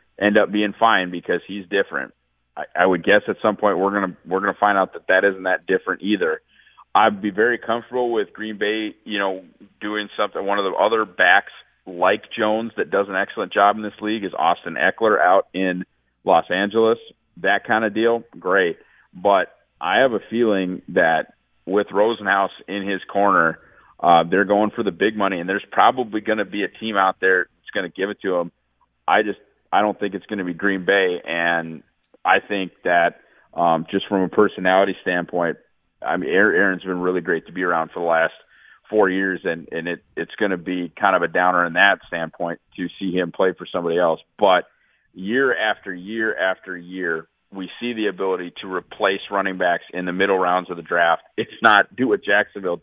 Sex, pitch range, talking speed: male, 90-105 Hz, 205 wpm